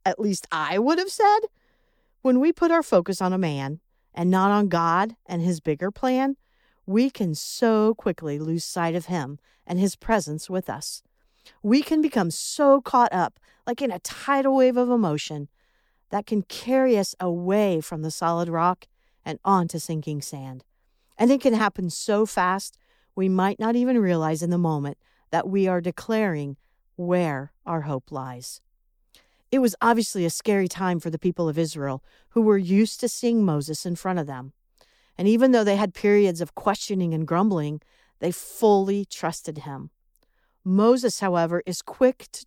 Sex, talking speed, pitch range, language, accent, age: female, 175 wpm, 160-220 Hz, English, American, 50-69